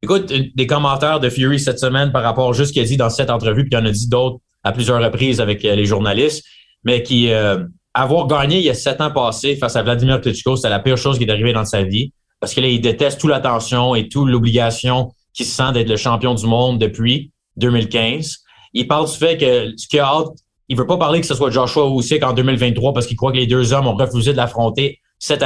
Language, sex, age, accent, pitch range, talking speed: French, male, 30-49, Canadian, 115-140 Hz, 245 wpm